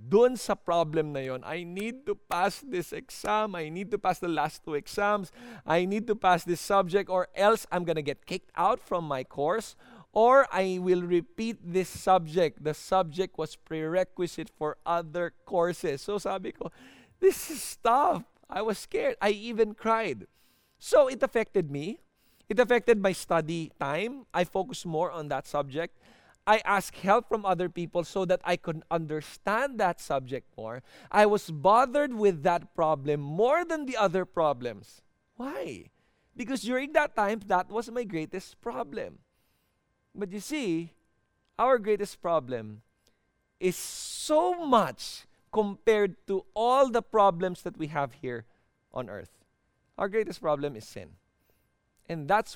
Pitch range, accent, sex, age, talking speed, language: 160-215 Hz, Filipino, male, 20-39, 155 wpm, English